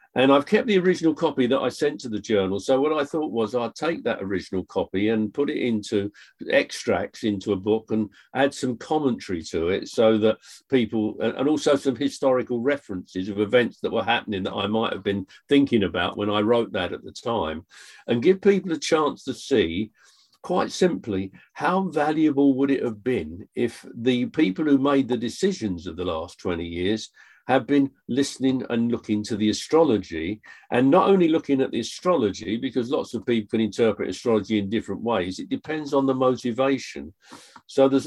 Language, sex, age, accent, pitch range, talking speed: English, male, 50-69, British, 105-135 Hz, 195 wpm